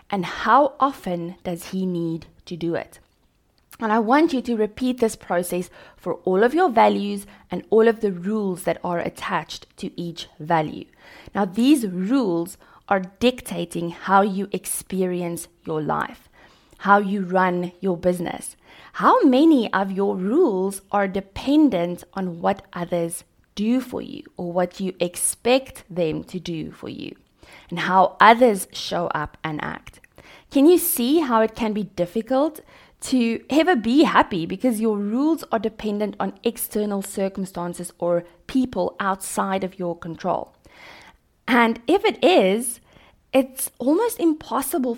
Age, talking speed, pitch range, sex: 20-39, 145 wpm, 180-250 Hz, female